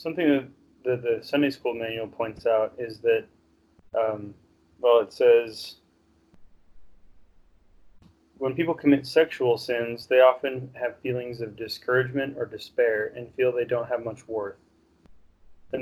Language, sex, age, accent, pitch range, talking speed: English, male, 20-39, American, 110-135 Hz, 135 wpm